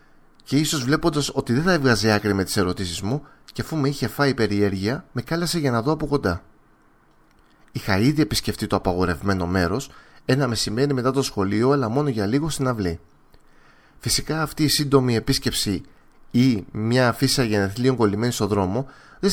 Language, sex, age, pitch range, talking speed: Greek, male, 30-49, 105-140 Hz, 170 wpm